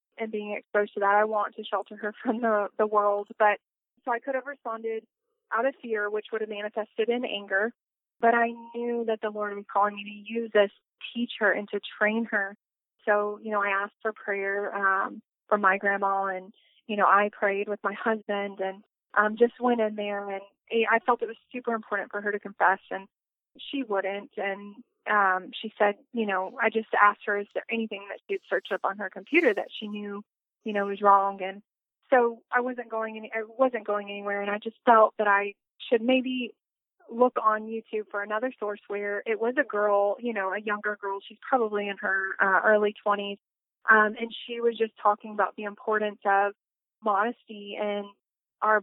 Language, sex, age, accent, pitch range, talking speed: English, female, 20-39, American, 205-230 Hz, 205 wpm